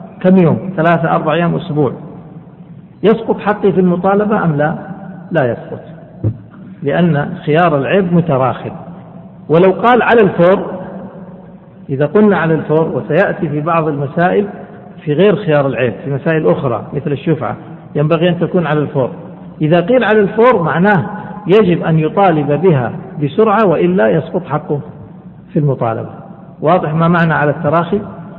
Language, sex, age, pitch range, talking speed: Arabic, male, 50-69, 155-190 Hz, 135 wpm